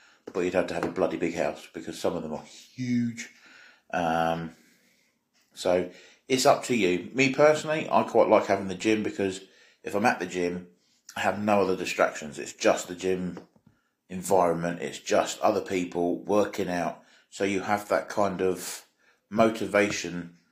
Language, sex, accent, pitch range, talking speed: English, male, British, 90-105 Hz, 170 wpm